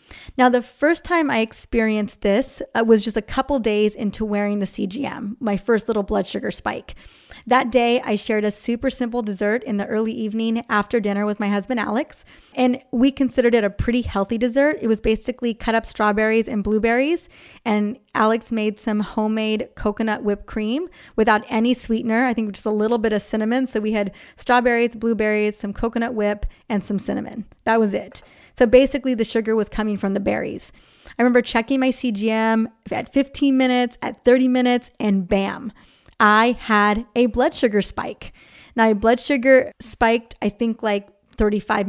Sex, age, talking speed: female, 20-39, 180 wpm